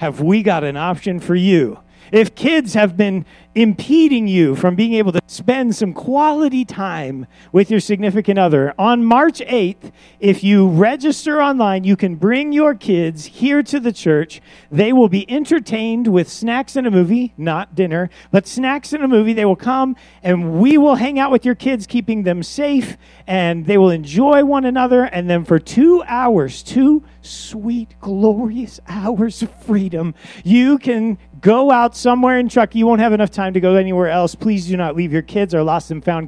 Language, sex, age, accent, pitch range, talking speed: English, male, 40-59, American, 170-240 Hz, 190 wpm